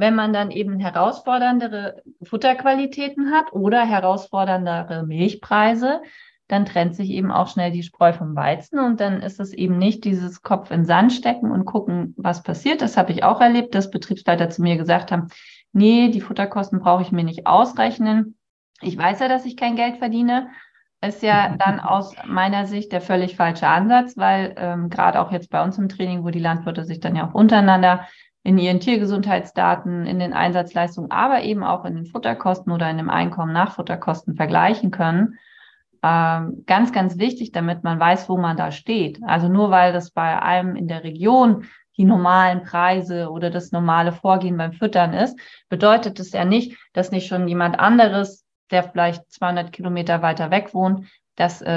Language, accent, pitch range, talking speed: German, German, 175-215 Hz, 180 wpm